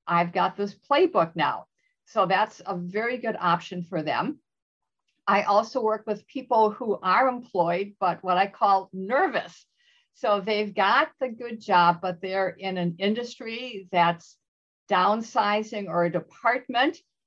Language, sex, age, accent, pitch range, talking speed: English, female, 50-69, American, 180-225 Hz, 145 wpm